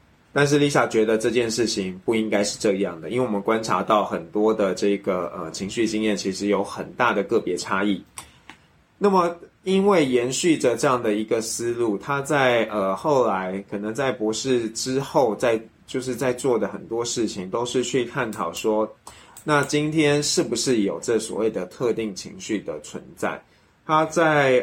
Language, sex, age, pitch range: Chinese, male, 20-39, 105-130 Hz